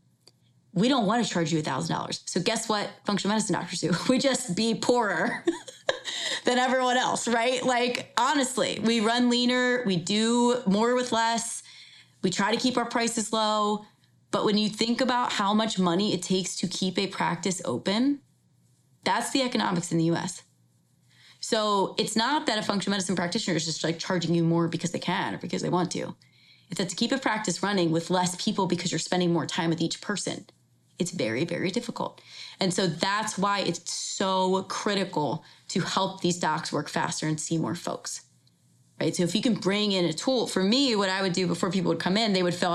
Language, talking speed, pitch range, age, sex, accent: English, 200 wpm, 175-225 Hz, 20-39, female, American